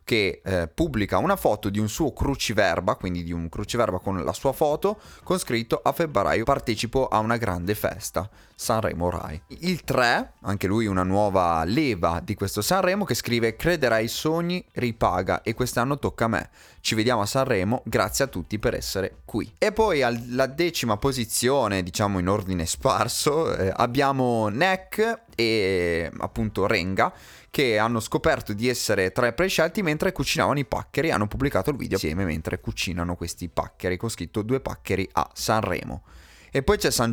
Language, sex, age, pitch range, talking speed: Italian, male, 20-39, 95-125 Hz, 170 wpm